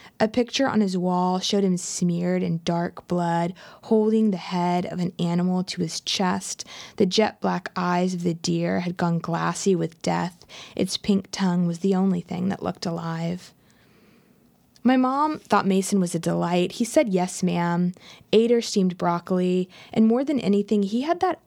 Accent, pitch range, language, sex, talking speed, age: American, 175-205 Hz, English, female, 175 wpm, 20-39